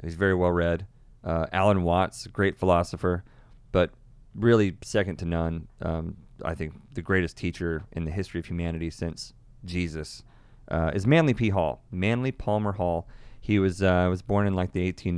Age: 30-49